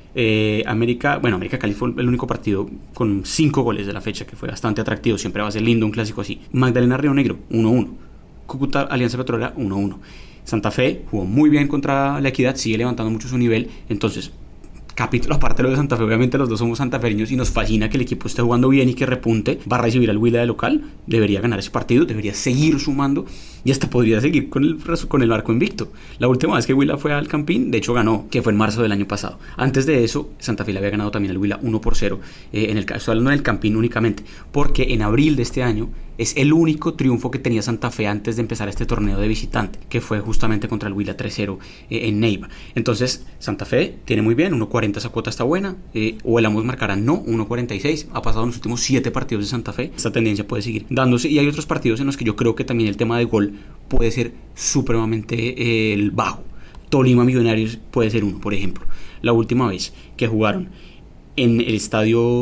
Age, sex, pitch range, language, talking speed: 20-39, male, 110-130 Hz, Spanish, 220 wpm